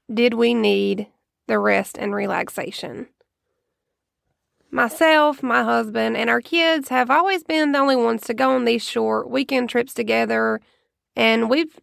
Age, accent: 20-39, American